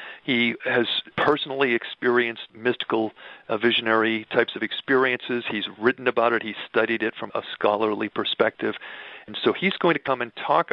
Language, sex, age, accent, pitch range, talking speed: English, male, 40-59, American, 115-140 Hz, 160 wpm